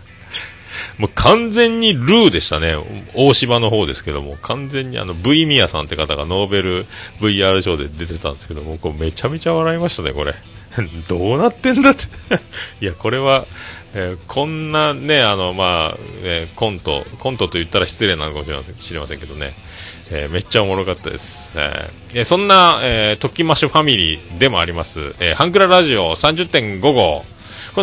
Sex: male